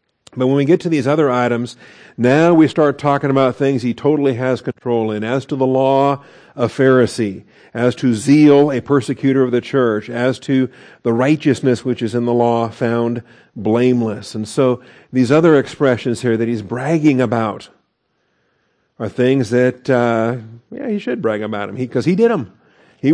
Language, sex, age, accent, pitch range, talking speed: English, male, 50-69, American, 120-155 Hz, 180 wpm